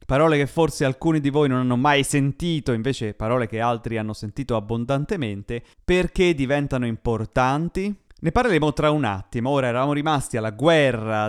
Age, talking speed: 30-49, 160 wpm